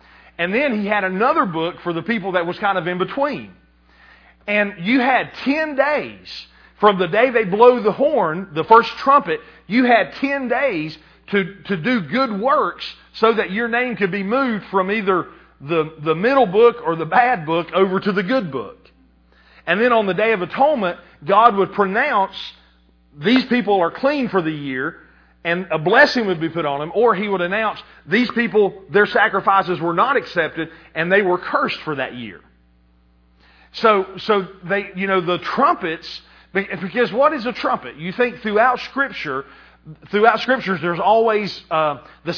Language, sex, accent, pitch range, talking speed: English, male, American, 165-230 Hz, 180 wpm